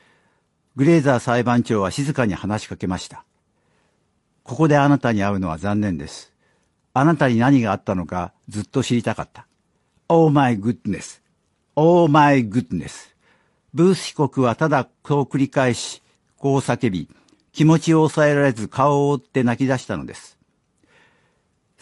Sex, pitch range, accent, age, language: male, 115-150 Hz, native, 60-79, Japanese